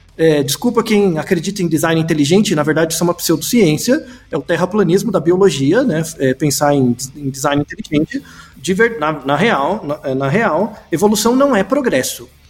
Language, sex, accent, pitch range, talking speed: Portuguese, male, Brazilian, 165-250 Hz, 145 wpm